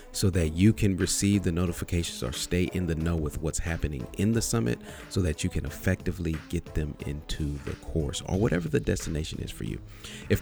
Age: 40-59